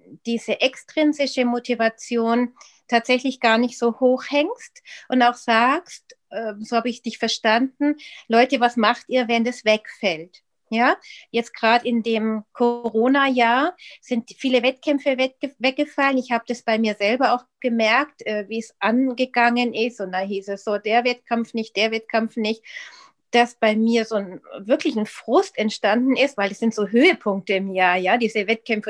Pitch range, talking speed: 220-260 Hz, 160 wpm